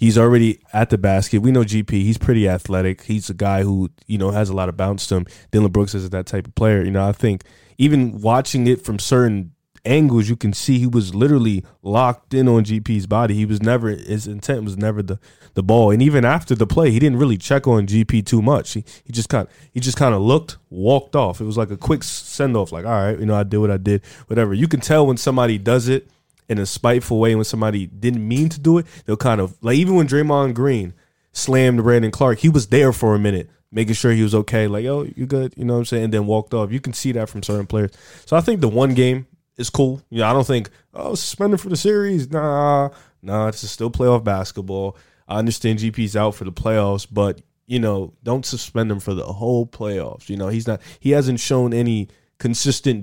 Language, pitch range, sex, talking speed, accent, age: English, 105-130 Hz, male, 235 wpm, American, 20-39